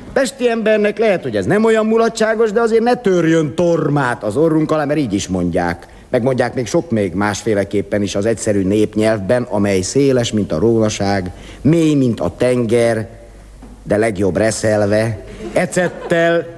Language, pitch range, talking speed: Hungarian, 105-175 Hz, 150 wpm